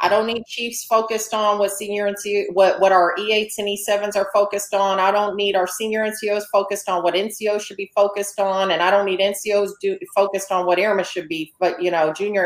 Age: 40-59